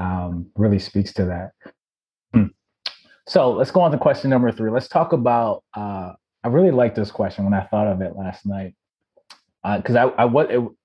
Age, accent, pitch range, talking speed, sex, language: 30-49, American, 100-120 Hz, 200 wpm, male, English